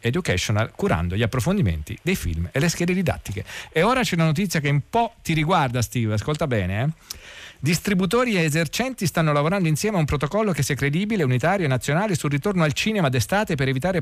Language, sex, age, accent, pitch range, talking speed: Italian, male, 40-59, native, 120-170 Hz, 195 wpm